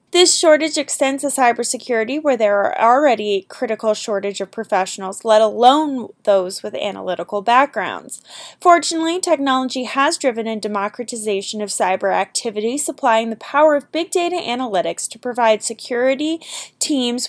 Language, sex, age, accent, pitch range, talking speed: English, female, 10-29, American, 215-295 Hz, 140 wpm